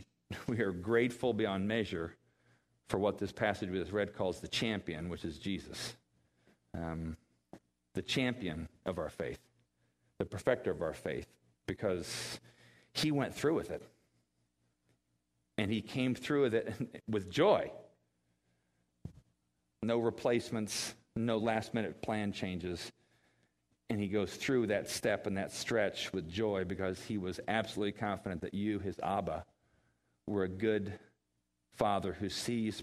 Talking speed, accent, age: 135 wpm, American, 50-69